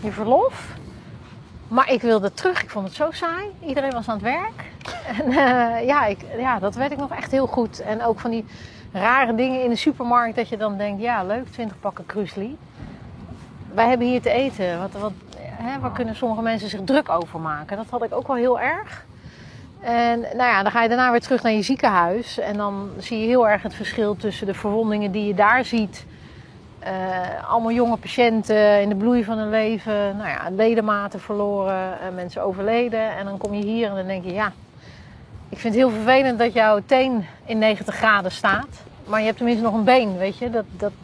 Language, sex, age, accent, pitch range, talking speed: Dutch, female, 30-49, Dutch, 200-240 Hz, 215 wpm